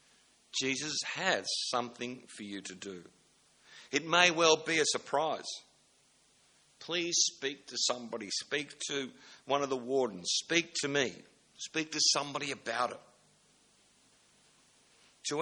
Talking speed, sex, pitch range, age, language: 125 wpm, male, 120-160 Hz, 60-79, English